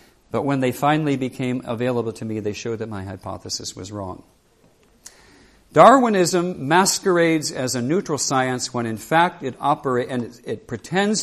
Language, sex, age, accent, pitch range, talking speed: English, male, 50-69, American, 115-155 Hz, 160 wpm